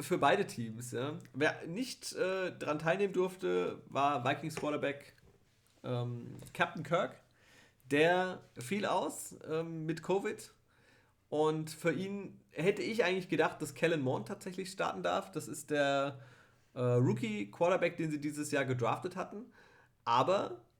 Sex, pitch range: male, 125-160 Hz